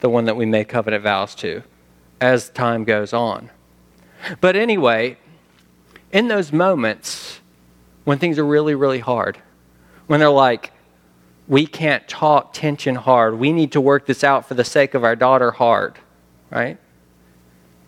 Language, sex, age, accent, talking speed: English, male, 40-59, American, 150 wpm